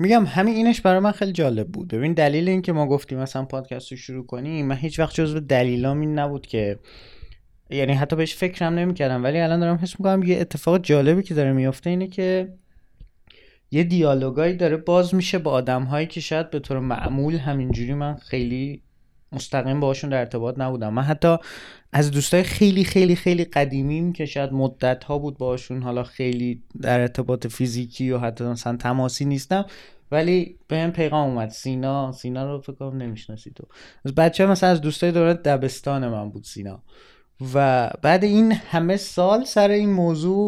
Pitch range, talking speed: 130-175 Hz, 170 wpm